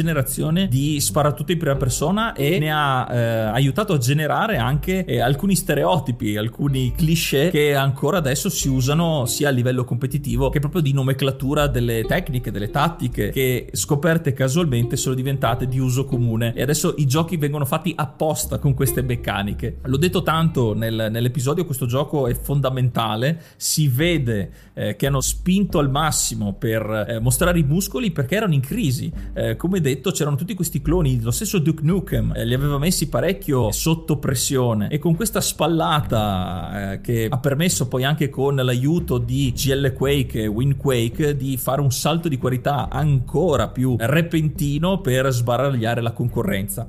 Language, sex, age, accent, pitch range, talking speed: Italian, male, 30-49, native, 125-160 Hz, 165 wpm